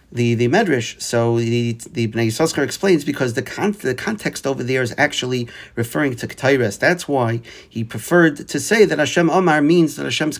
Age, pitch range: 50-69, 115-150 Hz